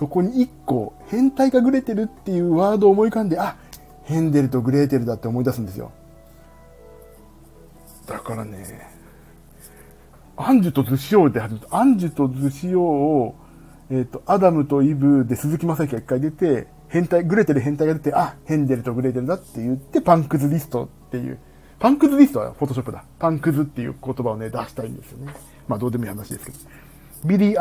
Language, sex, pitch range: Japanese, male, 110-170 Hz